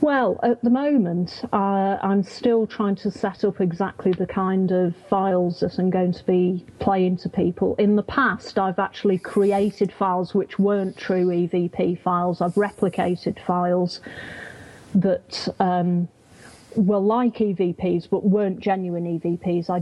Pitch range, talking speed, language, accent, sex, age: 180-205 Hz, 150 wpm, English, British, female, 40-59